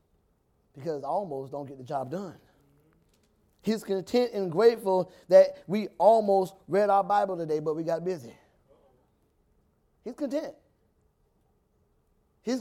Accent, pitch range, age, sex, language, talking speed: American, 155-225 Hz, 30-49, male, English, 120 wpm